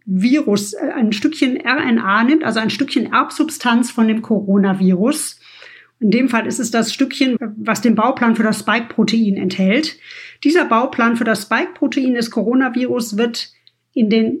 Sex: female